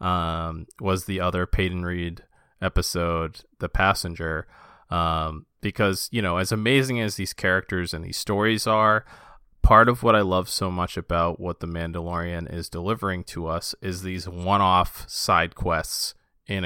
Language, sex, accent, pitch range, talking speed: English, male, American, 85-100 Hz, 160 wpm